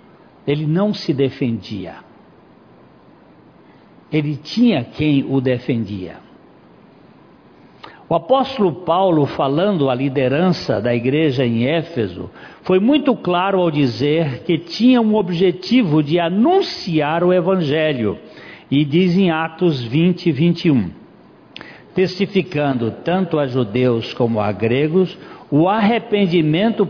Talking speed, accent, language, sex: 105 wpm, Brazilian, Portuguese, male